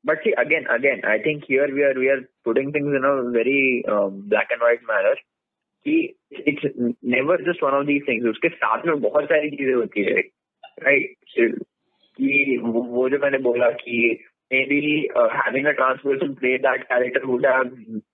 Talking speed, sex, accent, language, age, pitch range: 190 wpm, male, native, Hindi, 20-39, 120-155 Hz